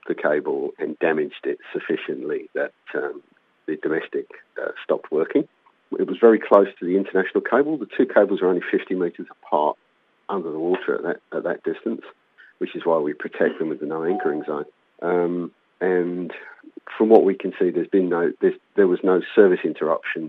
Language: English